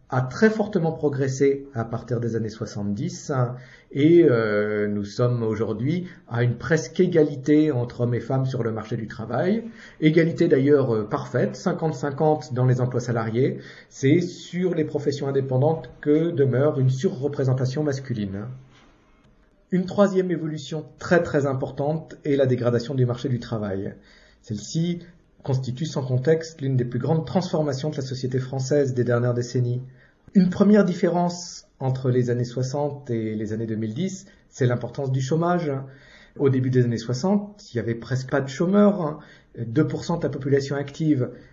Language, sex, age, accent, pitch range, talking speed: French, male, 50-69, French, 120-160 Hz, 155 wpm